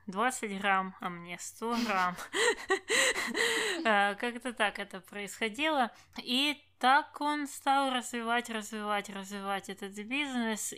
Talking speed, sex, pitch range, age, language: 105 wpm, female, 180-225 Hz, 20-39, Russian